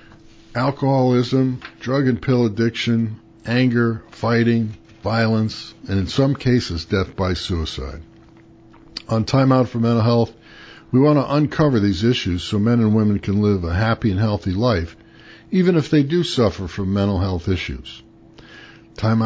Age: 60-79